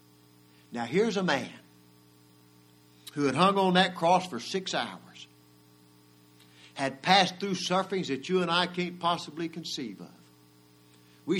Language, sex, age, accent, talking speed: English, male, 60-79, American, 135 wpm